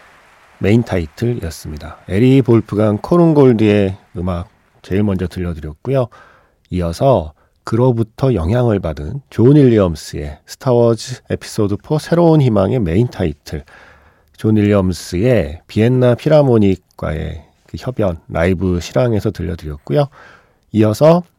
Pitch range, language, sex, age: 85-130 Hz, Korean, male, 40-59